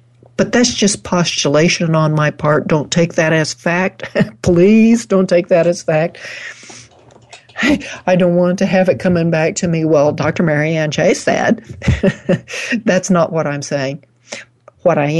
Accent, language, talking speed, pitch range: American, English, 160 wpm, 125-195 Hz